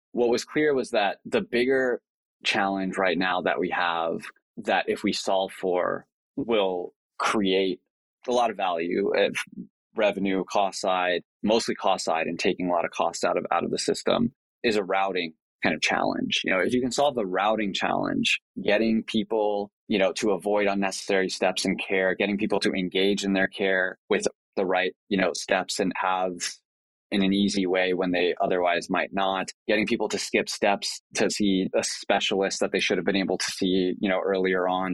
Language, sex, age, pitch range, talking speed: English, male, 20-39, 90-100 Hz, 195 wpm